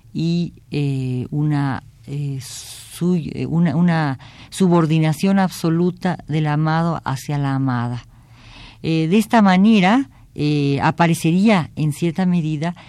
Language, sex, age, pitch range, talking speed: Spanish, female, 50-69, 130-170 Hz, 110 wpm